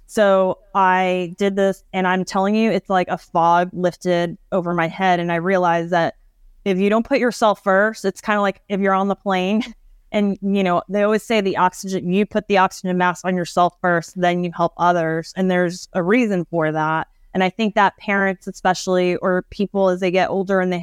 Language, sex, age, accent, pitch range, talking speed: English, female, 20-39, American, 175-195 Hz, 215 wpm